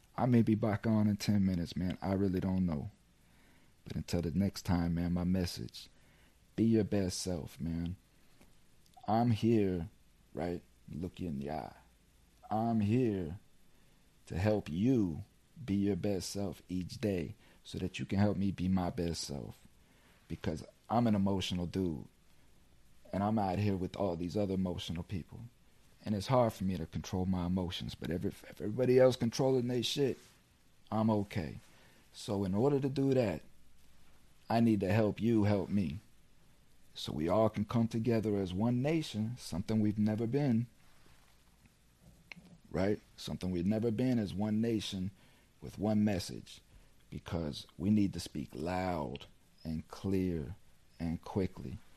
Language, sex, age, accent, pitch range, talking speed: English, male, 40-59, American, 85-110 Hz, 155 wpm